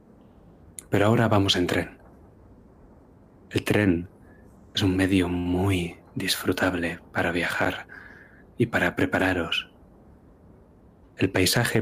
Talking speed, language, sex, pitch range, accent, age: 95 wpm, Spanish, male, 90-105 Hz, Spanish, 30-49